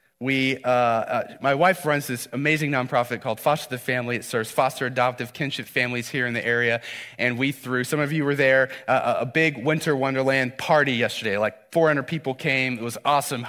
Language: English